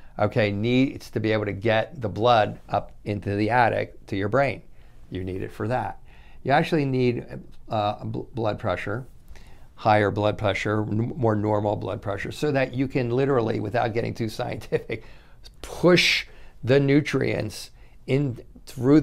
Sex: male